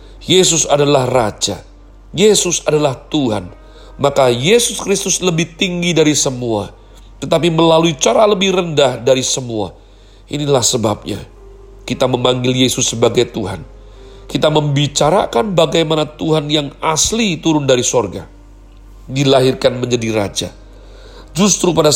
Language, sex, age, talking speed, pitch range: Indonesian, male, 40-59, 110 wpm, 110-155 Hz